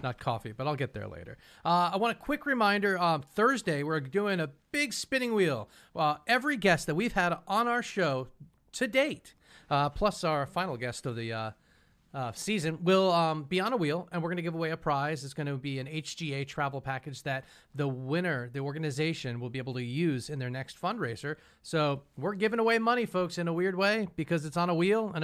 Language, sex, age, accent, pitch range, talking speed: English, male, 40-59, American, 140-190 Hz, 225 wpm